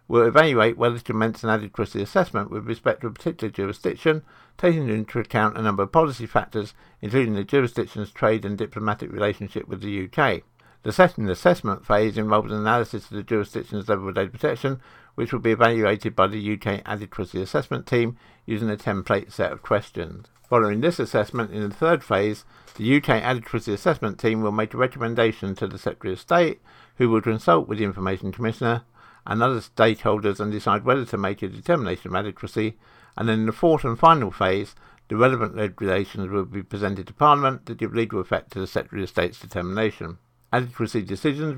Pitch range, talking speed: 100-120 Hz, 185 wpm